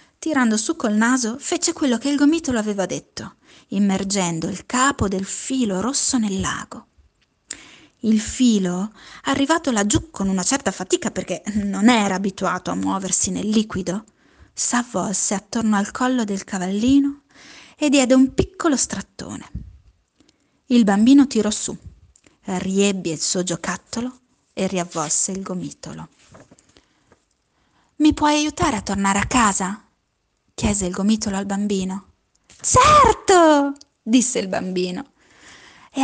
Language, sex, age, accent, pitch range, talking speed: Italian, female, 20-39, native, 195-275 Hz, 125 wpm